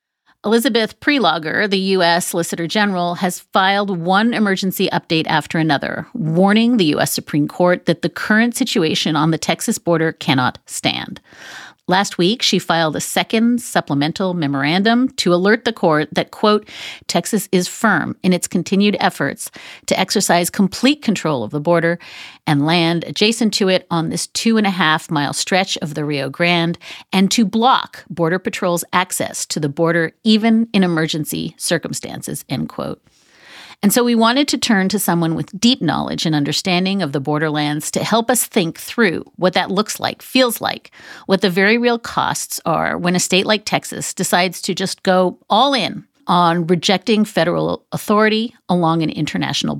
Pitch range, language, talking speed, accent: 170-215 Hz, English, 165 wpm, American